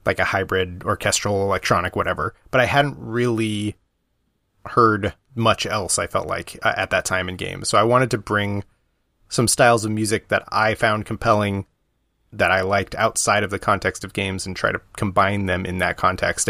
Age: 30-49